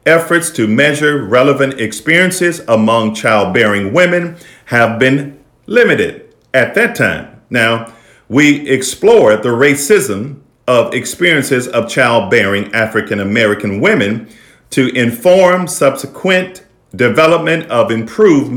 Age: 50-69